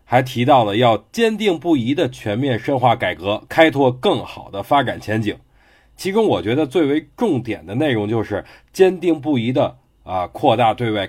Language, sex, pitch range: Chinese, male, 115-165 Hz